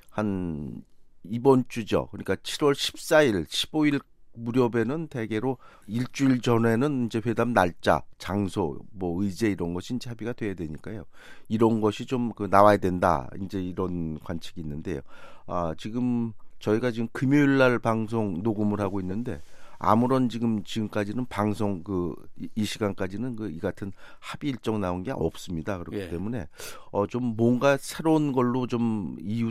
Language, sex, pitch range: Korean, male, 90-120 Hz